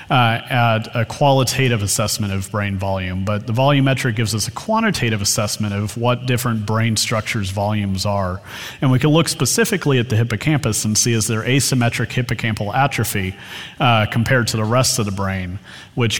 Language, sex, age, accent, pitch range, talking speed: English, male, 40-59, American, 105-125 Hz, 175 wpm